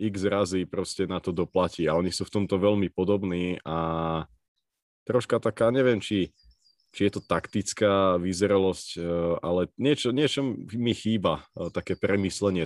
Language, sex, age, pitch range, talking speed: Slovak, male, 30-49, 85-100 Hz, 140 wpm